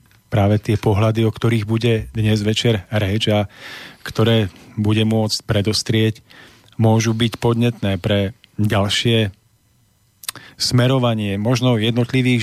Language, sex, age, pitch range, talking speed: Slovak, male, 40-59, 105-120 Hz, 105 wpm